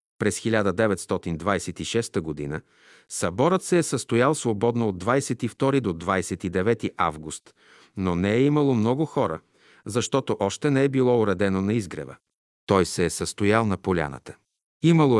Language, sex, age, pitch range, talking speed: Bulgarian, male, 50-69, 90-120 Hz, 135 wpm